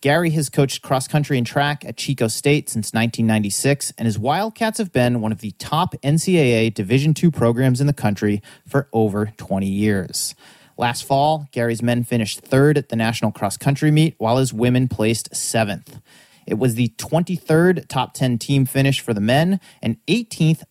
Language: English